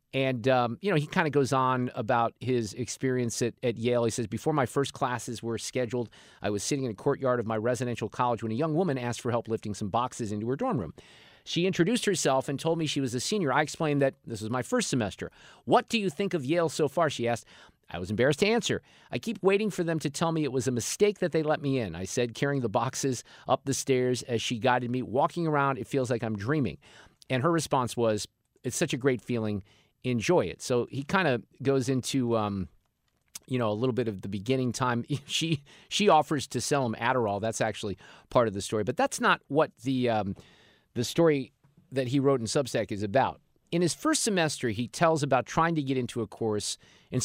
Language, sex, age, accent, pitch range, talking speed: English, male, 50-69, American, 115-150 Hz, 235 wpm